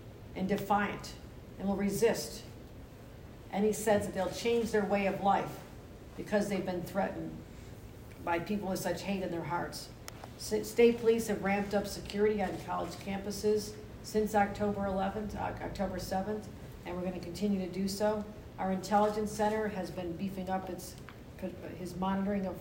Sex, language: female, English